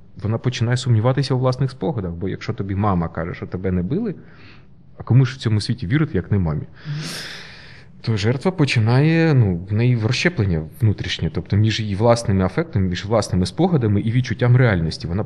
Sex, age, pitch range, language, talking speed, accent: male, 20-39, 95-130 Hz, Ukrainian, 175 wpm, native